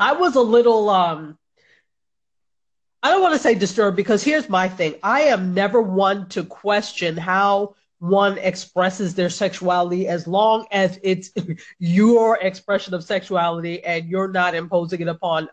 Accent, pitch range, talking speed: American, 175-220 Hz, 155 wpm